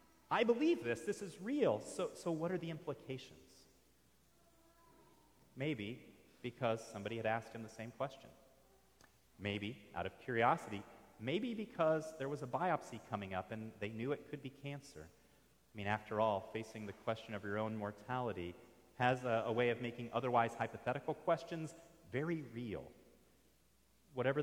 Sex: male